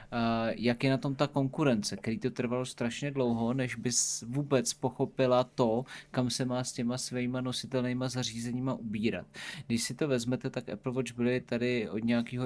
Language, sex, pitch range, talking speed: Czech, male, 115-130 Hz, 175 wpm